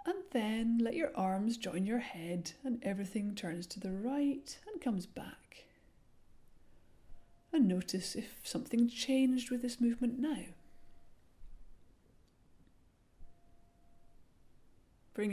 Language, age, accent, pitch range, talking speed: English, 40-59, British, 185-260 Hz, 105 wpm